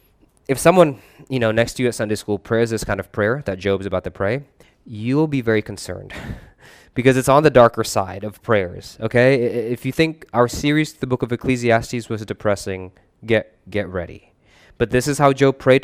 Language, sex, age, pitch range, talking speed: English, male, 20-39, 100-130 Hz, 200 wpm